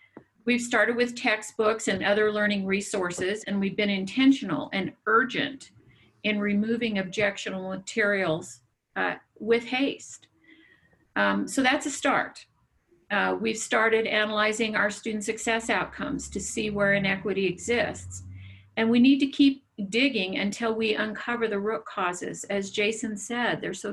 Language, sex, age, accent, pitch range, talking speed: English, female, 50-69, American, 195-230 Hz, 140 wpm